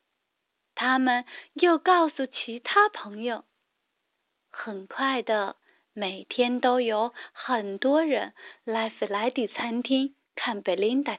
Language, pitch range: Chinese, 235-320 Hz